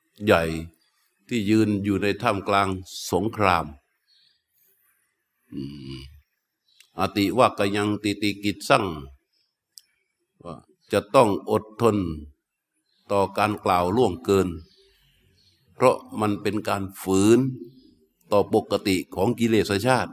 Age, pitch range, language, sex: 60-79, 95-110 Hz, Thai, male